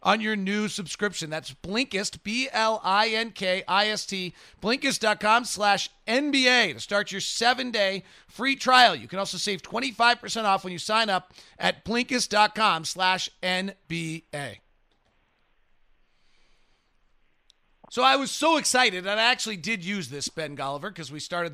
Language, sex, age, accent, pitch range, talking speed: English, male, 40-59, American, 165-230 Hz, 130 wpm